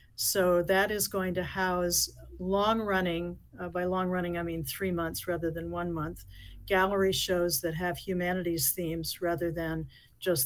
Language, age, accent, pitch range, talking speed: English, 50-69, American, 165-190 Hz, 155 wpm